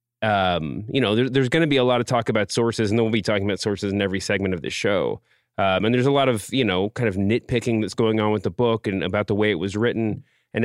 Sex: male